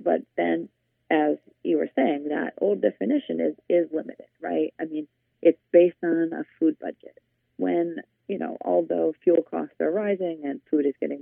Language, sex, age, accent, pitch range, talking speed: English, female, 40-59, American, 145-200 Hz, 175 wpm